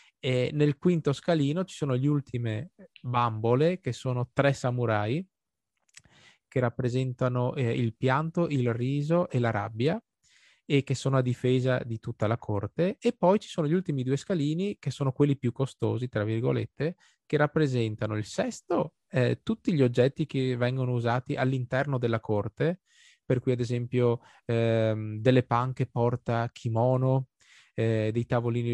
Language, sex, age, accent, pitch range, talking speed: Italian, male, 20-39, native, 115-140 Hz, 150 wpm